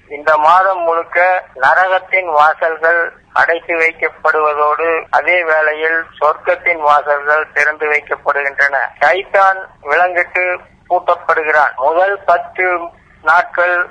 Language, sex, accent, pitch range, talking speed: Tamil, male, native, 155-175 Hz, 80 wpm